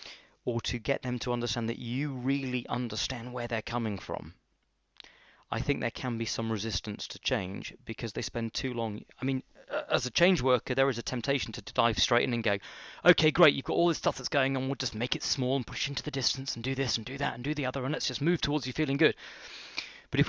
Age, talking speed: 30-49, 250 wpm